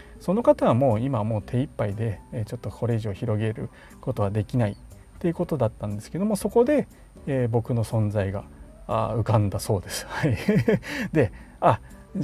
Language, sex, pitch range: Japanese, male, 110-145 Hz